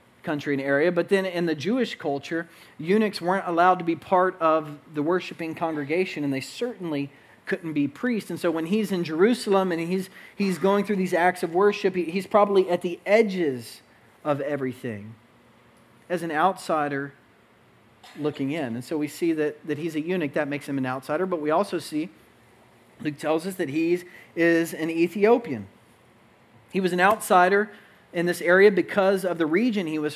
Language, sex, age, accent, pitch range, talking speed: English, male, 40-59, American, 150-185 Hz, 180 wpm